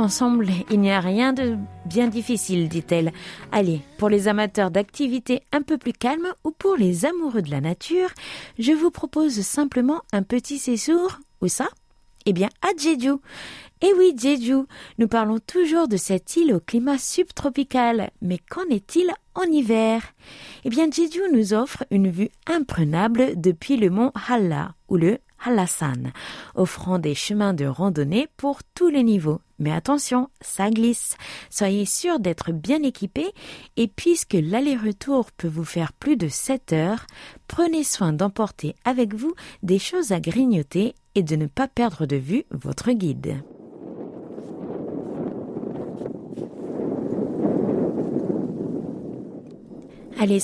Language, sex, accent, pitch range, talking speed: French, female, French, 185-280 Hz, 140 wpm